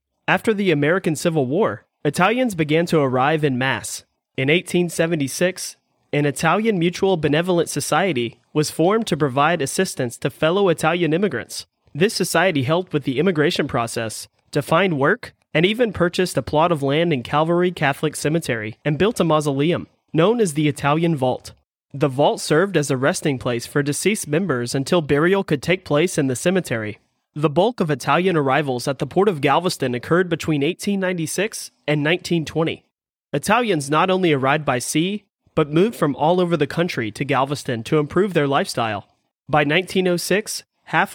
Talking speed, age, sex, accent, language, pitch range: 165 wpm, 30-49, male, American, English, 145-180 Hz